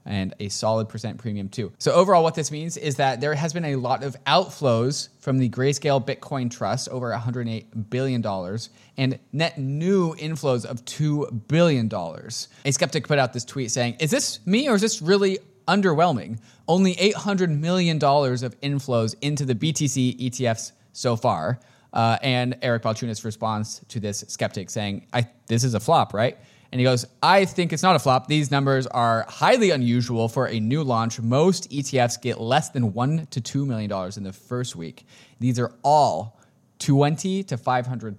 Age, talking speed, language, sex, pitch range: 20-39, 175 wpm, English, male, 110-145 Hz